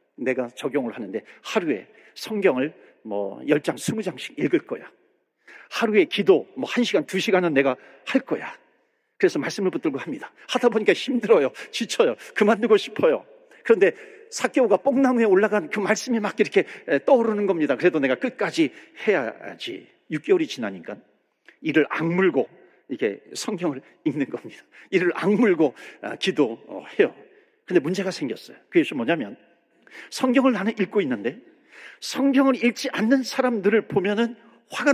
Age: 40-59